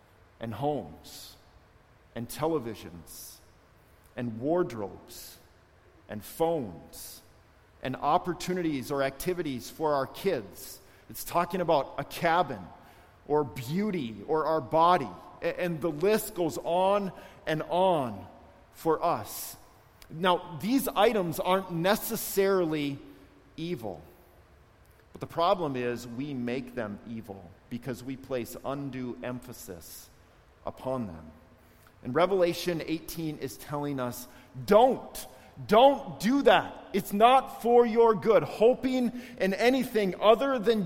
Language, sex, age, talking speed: English, male, 40-59, 110 wpm